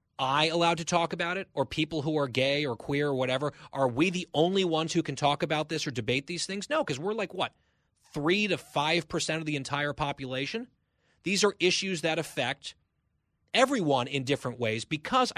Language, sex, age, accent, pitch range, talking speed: English, male, 30-49, American, 135-180 Hz, 205 wpm